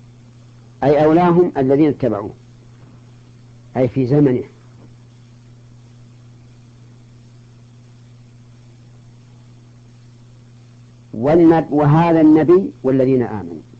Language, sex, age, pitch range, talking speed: Arabic, female, 50-69, 120-130 Hz, 50 wpm